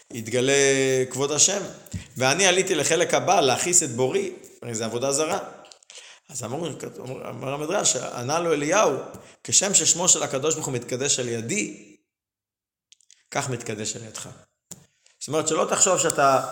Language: Hebrew